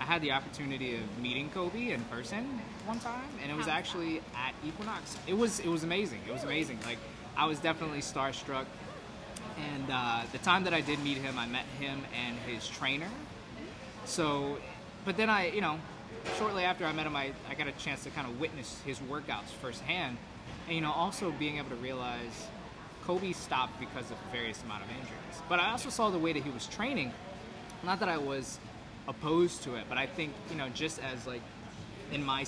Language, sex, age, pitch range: English, male, 20-39, 120-165 Hz